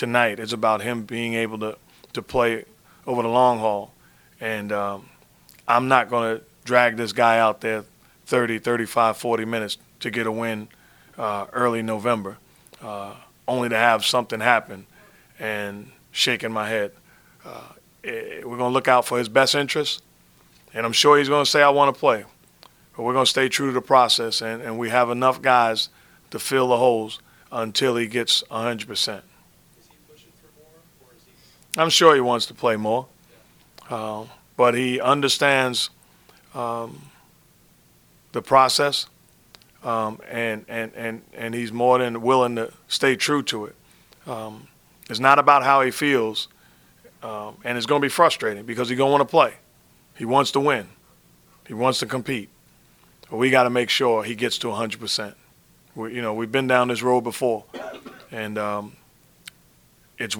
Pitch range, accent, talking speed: 110-130 Hz, American, 165 wpm